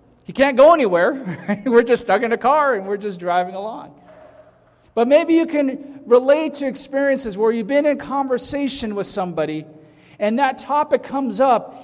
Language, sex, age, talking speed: English, male, 40-59, 170 wpm